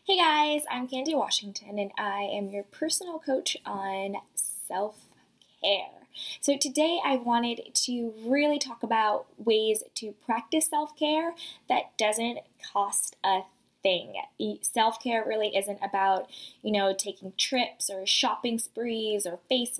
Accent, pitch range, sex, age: American, 195-260 Hz, female, 20-39